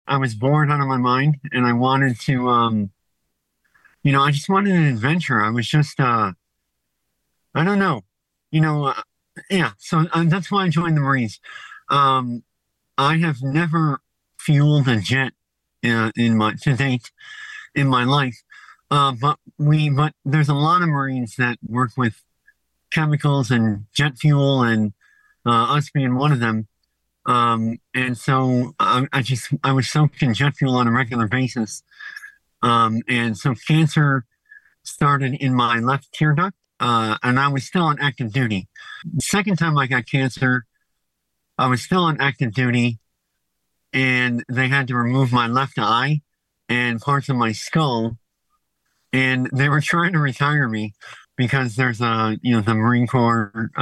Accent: American